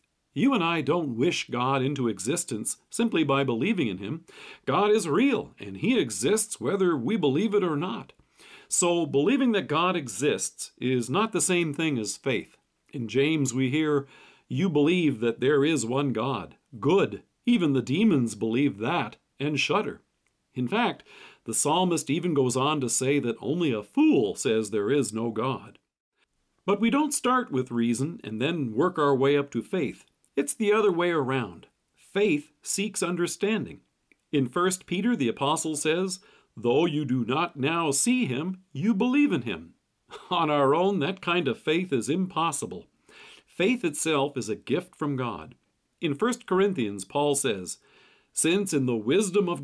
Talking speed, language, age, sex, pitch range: 170 wpm, English, 50-69, male, 130-185 Hz